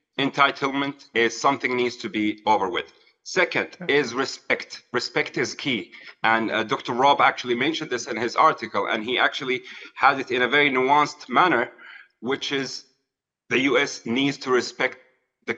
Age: 30-49